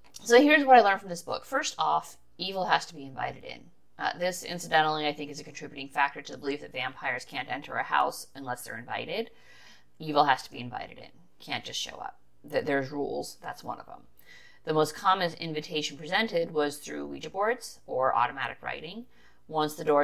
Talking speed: 205 wpm